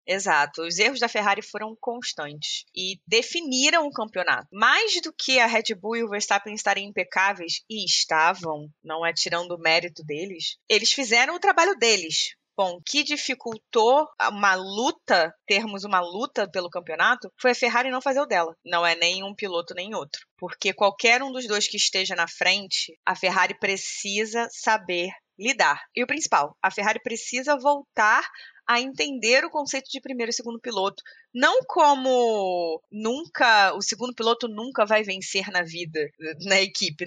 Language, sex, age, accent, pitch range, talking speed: Portuguese, female, 20-39, Brazilian, 185-265 Hz, 165 wpm